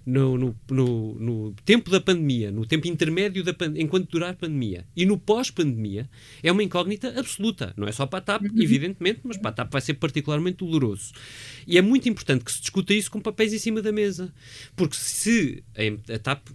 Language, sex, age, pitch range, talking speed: Portuguese, male, 30-49, 120-195 Hz, 205 wpm